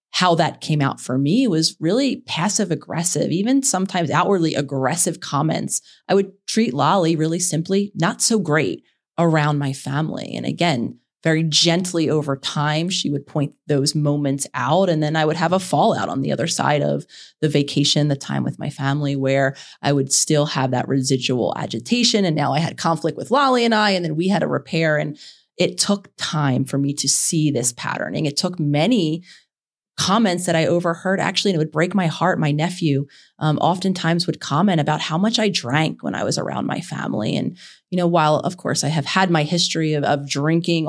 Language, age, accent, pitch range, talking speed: English, 30-49, American, 145-180 Hz, 200 wpm